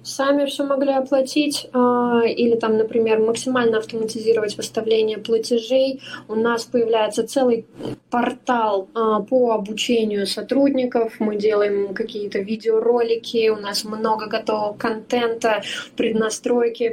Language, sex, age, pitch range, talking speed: Russian, female, 20-39, 200-240 Hz, 105 wpm